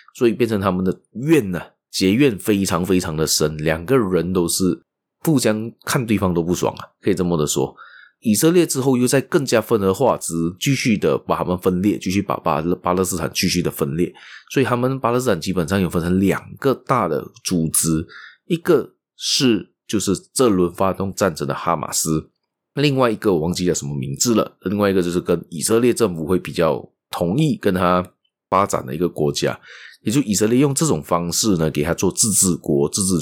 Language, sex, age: Chinese, male, 30-49